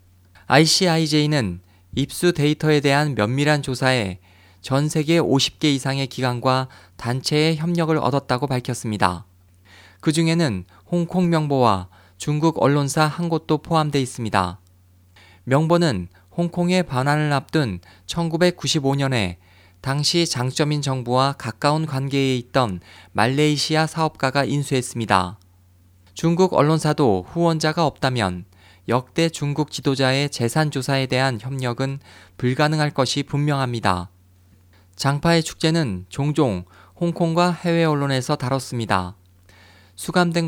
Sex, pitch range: male, 95-155 Hz